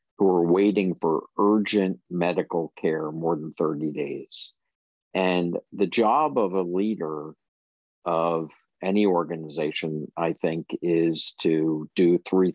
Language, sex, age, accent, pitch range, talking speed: English, male, 50-69, American, 80-90 Hz, 120 wpm